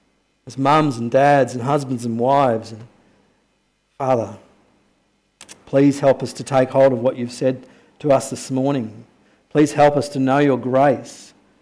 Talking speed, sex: 160 wpm, male